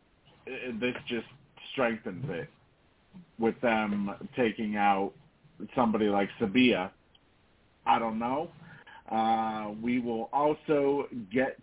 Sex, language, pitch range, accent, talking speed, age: male, English, 115-155 Hz, American, 100 wpm, 40-59